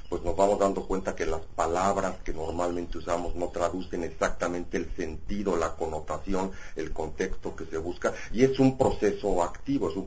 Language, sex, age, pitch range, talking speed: English, male, 50-69, 80-100 Hz, 180 wpm